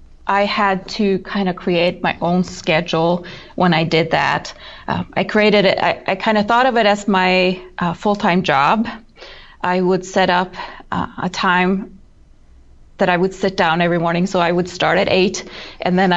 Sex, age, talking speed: female, 30-49, 190 wpm